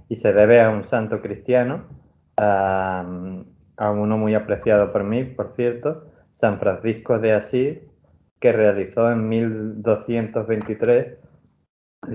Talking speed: 120 wpm